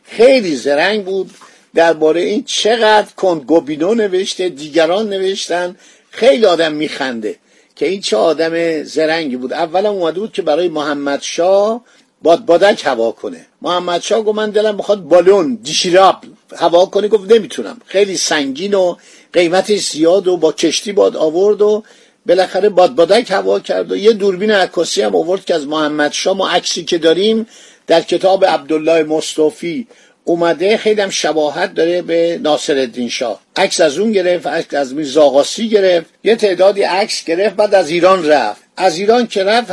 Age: 50-69